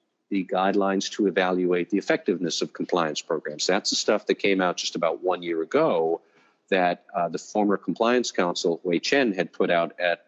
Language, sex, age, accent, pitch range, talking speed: English, male, 50-69, American, 95-125 Hz, 185 wpm